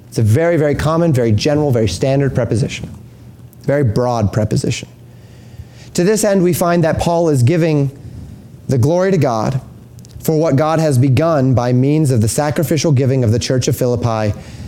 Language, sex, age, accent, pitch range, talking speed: English, male, 30-49, American, 120-155 Hz, 170 wpm